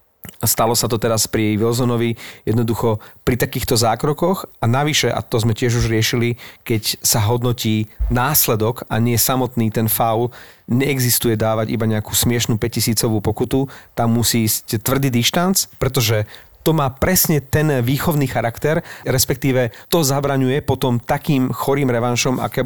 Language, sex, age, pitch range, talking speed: Slovak, male, 40-59, 115-135 Hz, 145 wpm